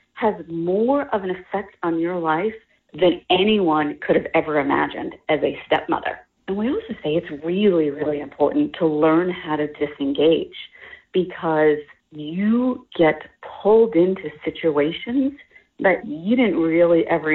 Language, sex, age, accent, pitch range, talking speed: English, female, 40-59, American, 160-210 Hz, 140 wpm